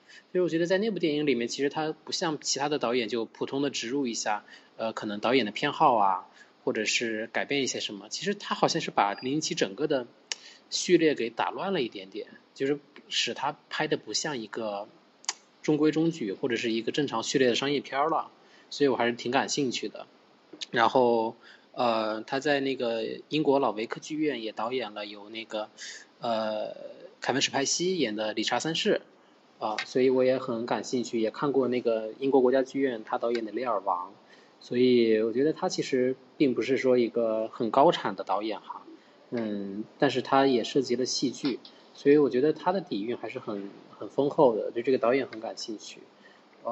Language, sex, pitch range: Chinese, male, 115-145 Hz